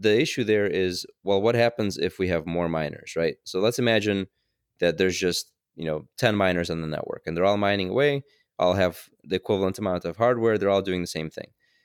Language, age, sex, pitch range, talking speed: English, 20-39, male, 85-100 Hz, 225 wpm